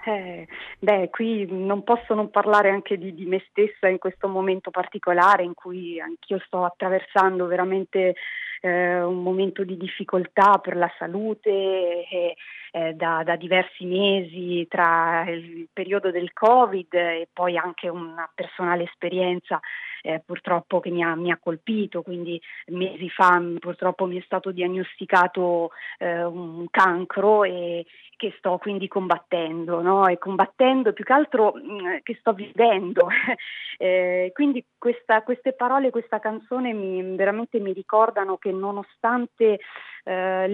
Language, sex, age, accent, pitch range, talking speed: Italian, female, 30-49, native, 180-215 Hz, 140 wpm